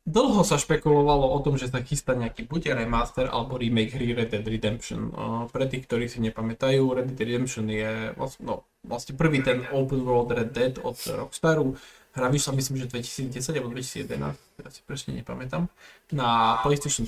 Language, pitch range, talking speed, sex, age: Slovak, 120-155 Hz, 180 wpm, male, 20-39